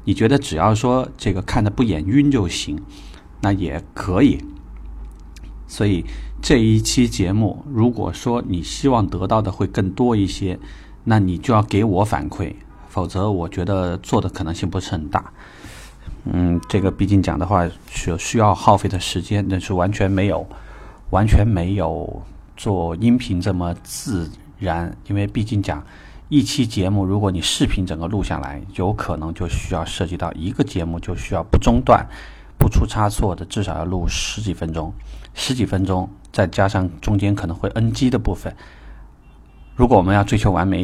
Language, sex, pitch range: Chinese, male, 85-100 Hz